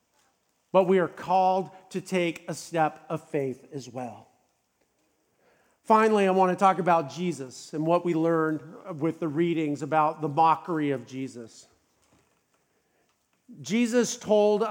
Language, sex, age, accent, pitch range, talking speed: English, male, 50-69, American, 175-210 Hz, 130 wpm